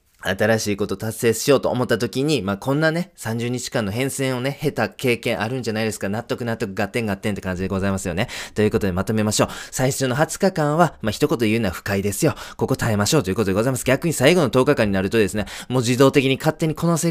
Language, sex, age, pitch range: Japanese, male, 20-39, 110-160 Hz